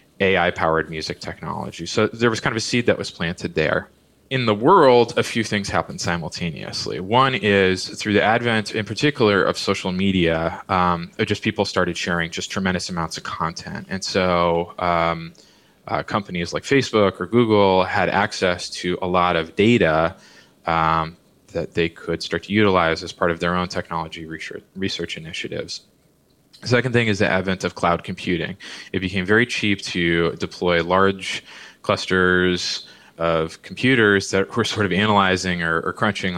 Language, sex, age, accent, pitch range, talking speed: English, male, 20-39, American, 85-105 Hz, 165 wpm